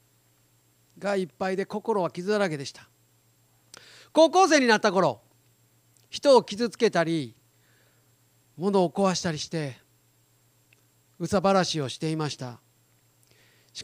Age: 40-59